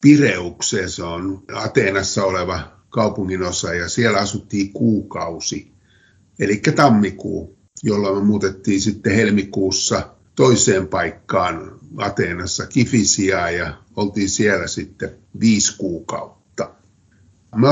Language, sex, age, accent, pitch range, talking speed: Finnish, male, 50-69, native, 95-115 Hz, 95 wpm